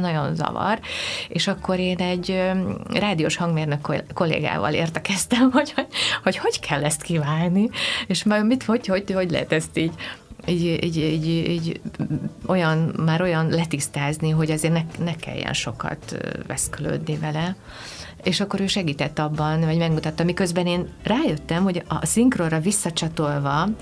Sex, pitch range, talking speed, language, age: female, 150-185 Hz, 140 wpm, Hungarian, 30-49